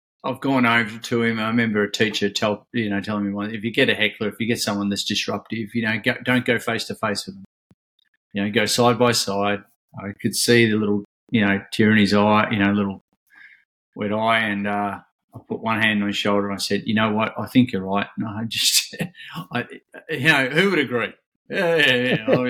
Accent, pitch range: Australian, 100-115 Hz